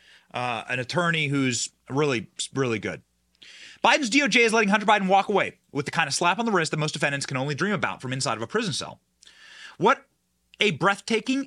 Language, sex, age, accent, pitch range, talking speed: English, male, 30-49, American, 145-235 Hz, 205 wpm